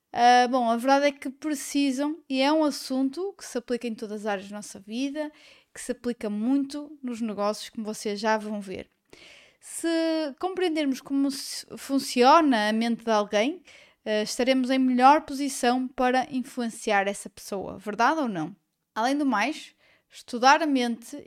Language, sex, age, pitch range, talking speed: Portuguese, female, 20-39, 225-285 Hz, 160 wpm